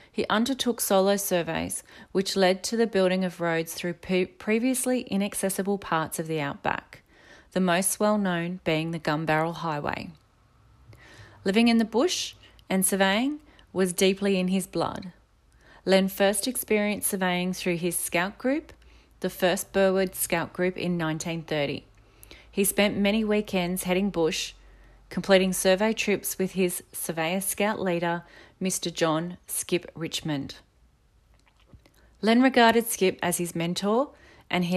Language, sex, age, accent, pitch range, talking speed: English, female, 30-49, Australian, 170-205 Hz, 135 wpm